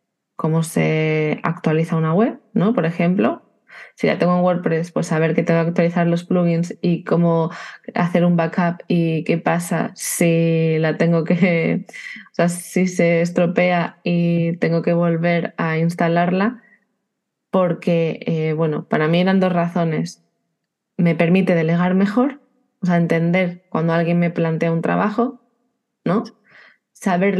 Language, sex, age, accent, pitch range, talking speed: Spanish, female, 20-39, Spanish, 165-185 Hz, 145 wpm